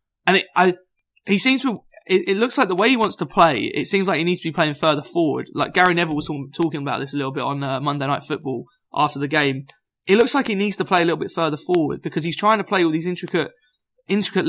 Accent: British